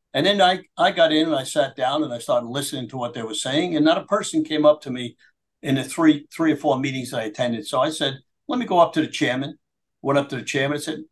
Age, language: 50-69, English